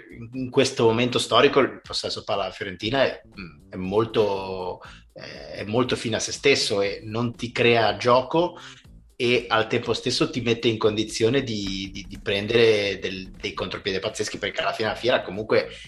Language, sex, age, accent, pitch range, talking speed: Italian, male, 30-49, native, 100-120 Hz, 165 wpm